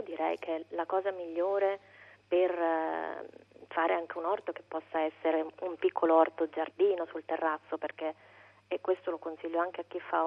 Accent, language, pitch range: native, Italian, 160-180 Hz